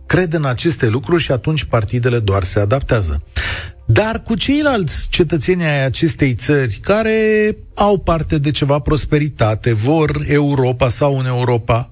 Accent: native